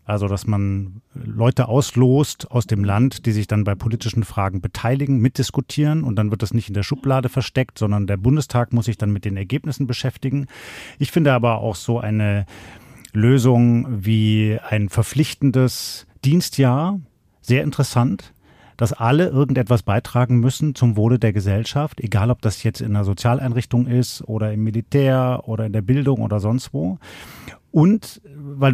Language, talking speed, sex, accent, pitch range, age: German, 160 wpm, male, German, 110-135 Hz, 40-59